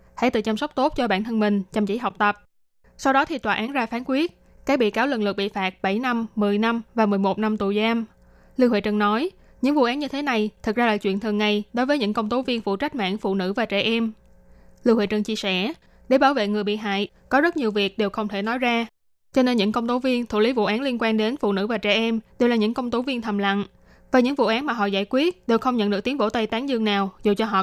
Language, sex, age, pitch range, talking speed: Vietnamese, female, 10-29, 205-250 Hz, 290 wpm